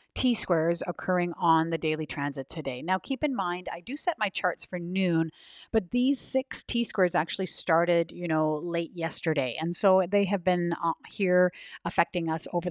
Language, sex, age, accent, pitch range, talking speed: English, female, 40-59, American, 160-195 Hz, 175 wpm